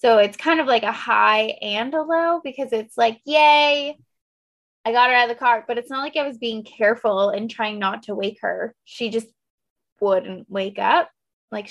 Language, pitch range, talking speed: English, 205-270 Hz, 210 wpm